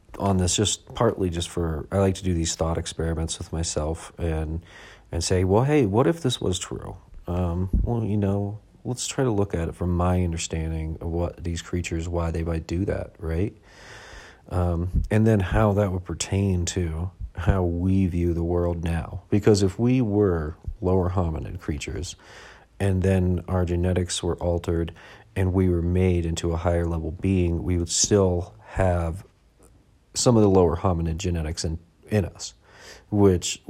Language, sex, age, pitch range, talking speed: English, male, 40-59, 85-100 Hz, 175 wpm